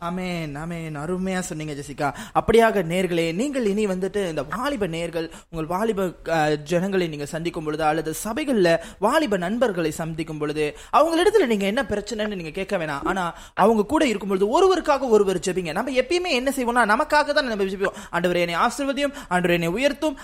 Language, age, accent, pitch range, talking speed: Tamil, 20-39, native, 180-275 Hz, 150 wpm